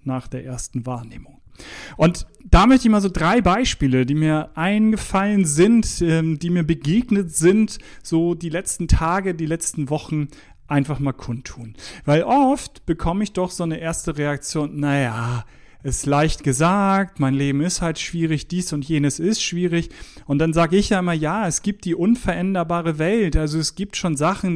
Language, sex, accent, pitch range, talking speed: German, male, German, 145-185 Hz, 170 wpm